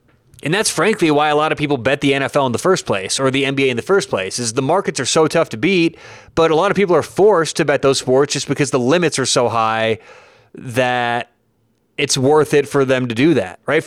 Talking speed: 250 wpm